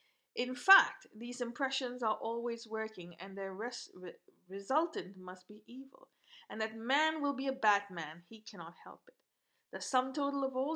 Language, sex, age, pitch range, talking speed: English, female, 50-69, 195-260 Hz, 165 wpm